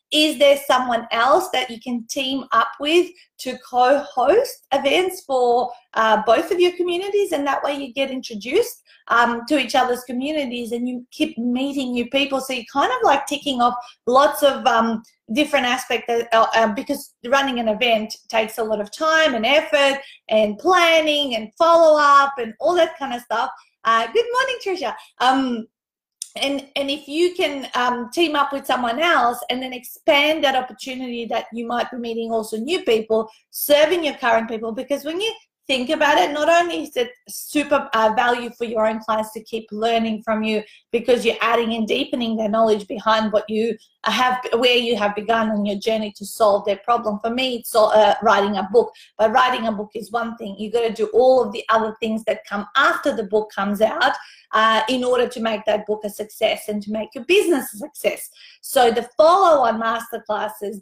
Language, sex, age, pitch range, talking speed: English, female, 30-49, 225-285 Hz, 195 wpm